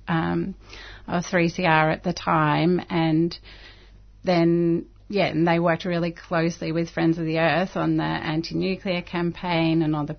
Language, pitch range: English, 155-175 Hz